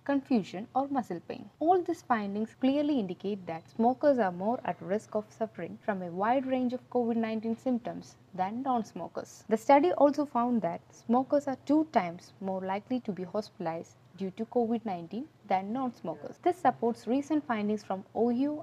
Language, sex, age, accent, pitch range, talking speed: English, female, 20-39, Indian, 190-255 Hz, 165 wpm